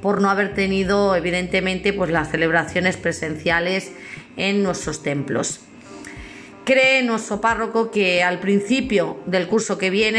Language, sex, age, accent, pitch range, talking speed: Spanish, female, 40-59, Spanish, 180-220 Hz, 130 wpm